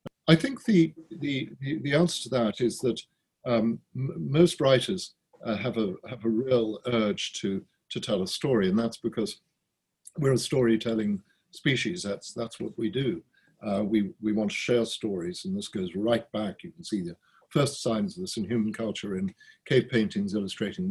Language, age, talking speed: English, 50-69, 185 wpm